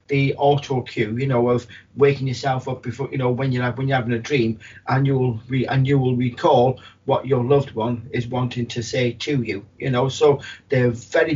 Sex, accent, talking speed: male, British, 205 wpm